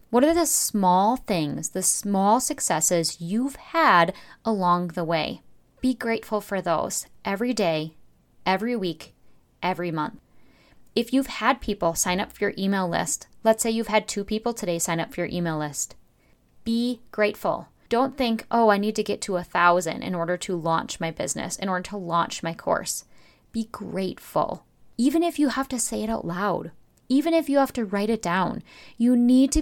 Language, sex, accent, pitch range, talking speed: English, female, American, 175-235 Hz, 185 wpm